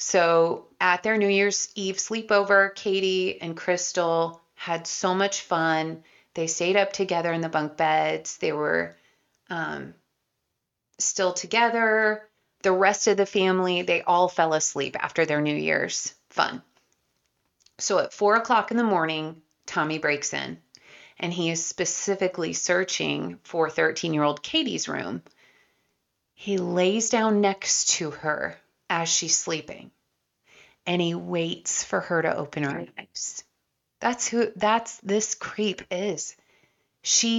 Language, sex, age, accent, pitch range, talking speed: English, female, 30-49, American, 165-200 Hz, 140 wpm